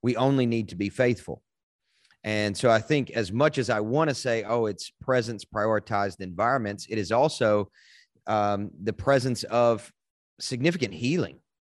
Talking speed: 160 wpm